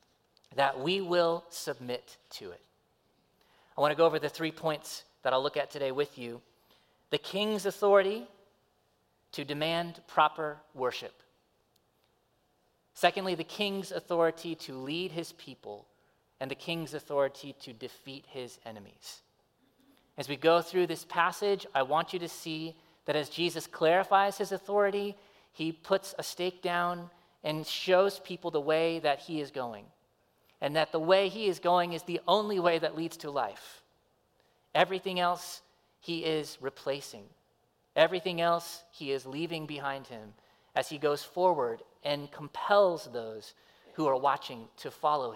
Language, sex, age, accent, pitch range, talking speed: English, male, 30-49, American, 145-180 Hz, 150 wpm